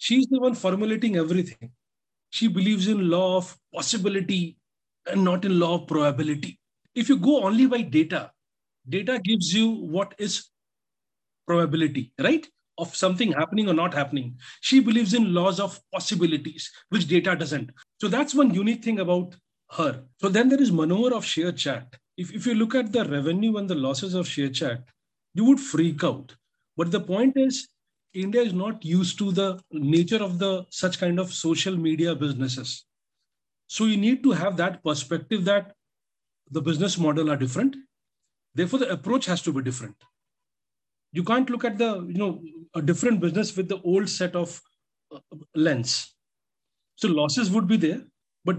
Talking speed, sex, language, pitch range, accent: 170 wpm, male, English, 160-220 Hz, Indian